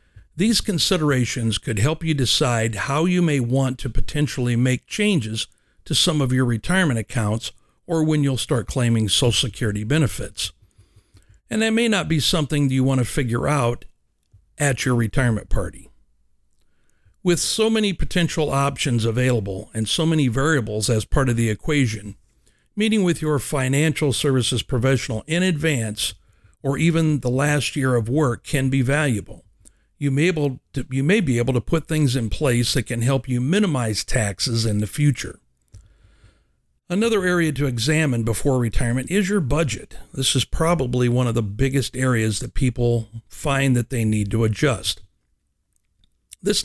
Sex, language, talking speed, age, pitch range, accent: male, English, 155 wpm, 60-79, 110-150 Hz, American